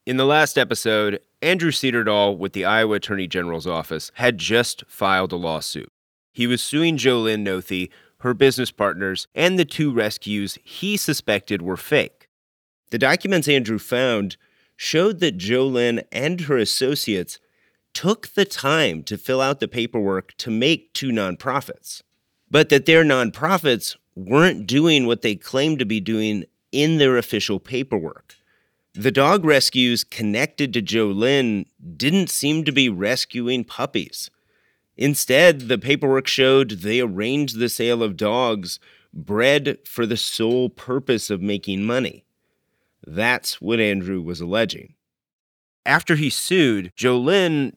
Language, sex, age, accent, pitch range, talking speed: English, male, 30-49, American, 105-140 Hz, 140 wpm